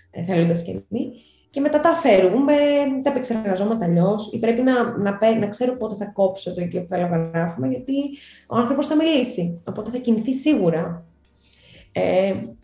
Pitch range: 175-220 Hz